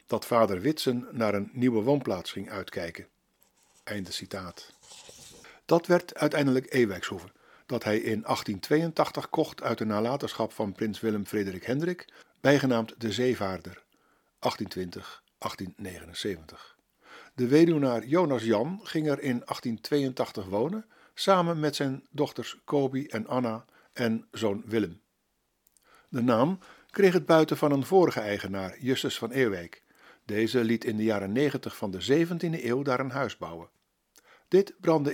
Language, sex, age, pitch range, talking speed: Dutch, male, 60-79, 110-145 Hz, 135 wpm